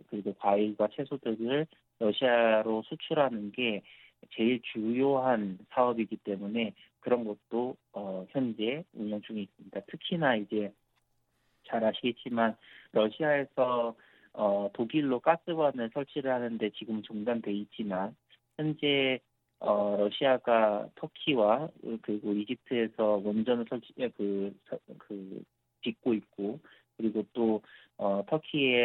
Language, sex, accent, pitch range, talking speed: English, male, Korean, 105-130 Hz, 85 wpm